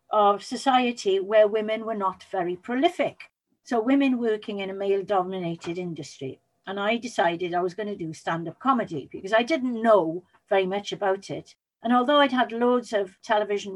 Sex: female